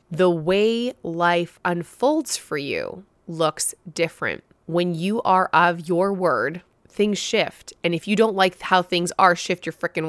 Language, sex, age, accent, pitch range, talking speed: English, female, 20-39, American, 165-195 Hz, 160 wpm